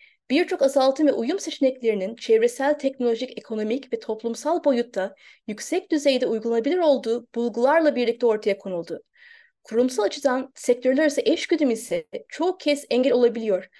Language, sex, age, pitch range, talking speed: Turkish, female, 30-49, 230-295 Hz, 125 wpm